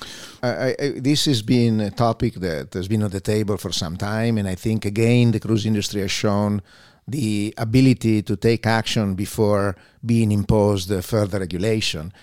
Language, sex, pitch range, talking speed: English, male, 105-120 Hz, 165 wpm